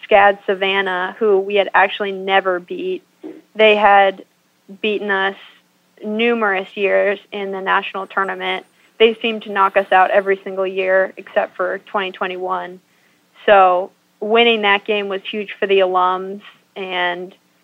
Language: English